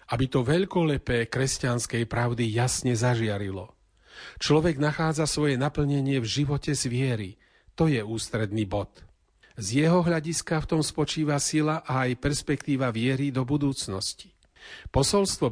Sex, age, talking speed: male, 40-59, 130 wpm